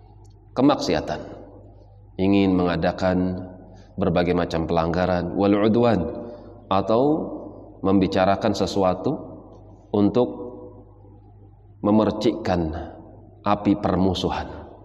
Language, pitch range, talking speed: Indonesian, 90-100 Hz, 55 wpm